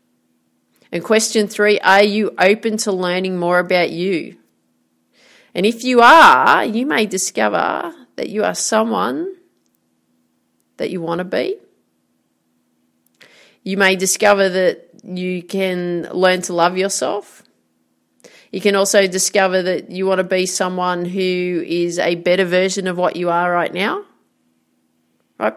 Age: 30-49